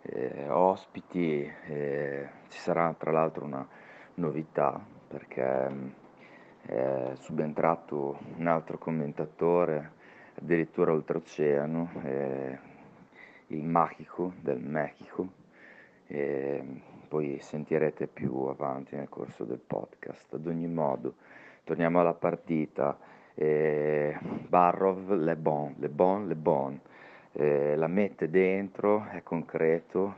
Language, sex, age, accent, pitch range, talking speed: Italian, male, 30-49, native, 70-85 Hz, 105 wpm